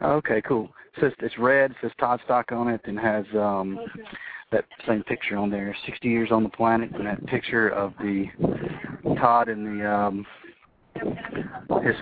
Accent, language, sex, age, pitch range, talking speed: American, English, male, 40-59, 115-140 Hz, 180 wpm